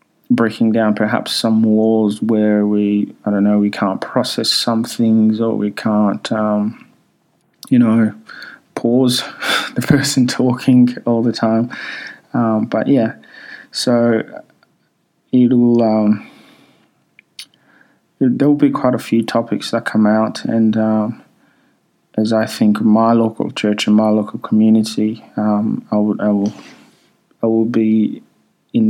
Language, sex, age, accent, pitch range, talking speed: English, male, 20-39, Australian, 105-125 Hz, 135 wpm